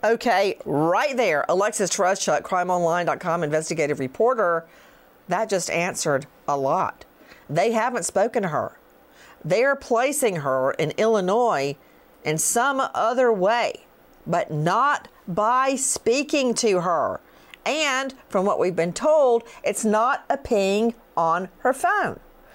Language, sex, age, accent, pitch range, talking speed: English, female, 50-69, American, 160-235 Hz, 120 wpm